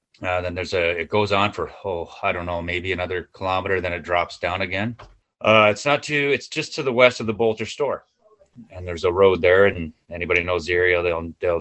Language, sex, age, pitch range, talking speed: English, male, 30-49, 90-105 Hz, 235 wpm